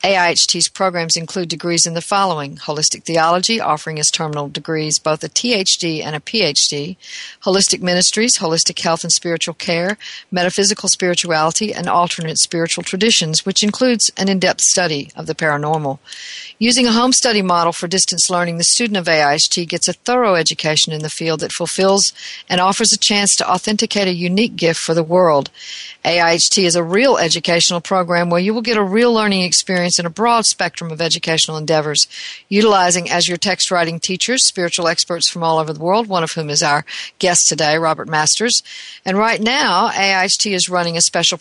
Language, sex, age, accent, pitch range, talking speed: English, female, 50-69, American, 165-200 Hz, 180 wpm